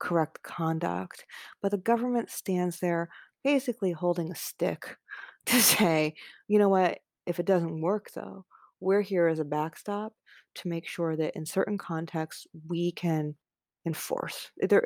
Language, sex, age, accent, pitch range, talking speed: English, female, 30-49, American, 170-200 Hz, 145 wpm